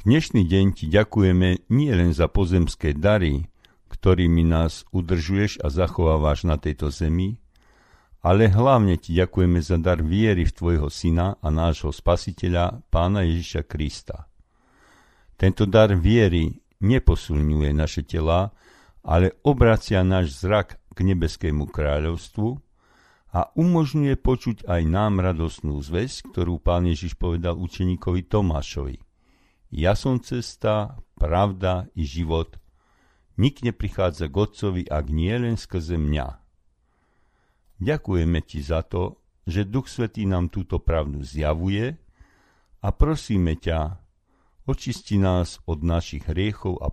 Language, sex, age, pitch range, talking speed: Slovak, male, 50-69, 80-105 Hz, 120 wpm